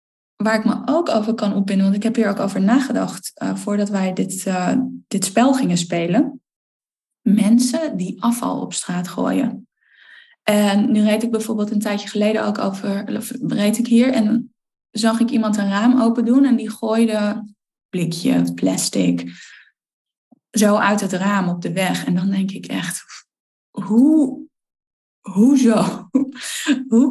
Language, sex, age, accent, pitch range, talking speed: Dutch, female, 10-29, Dutch, 190-235 Hz, 155 wpm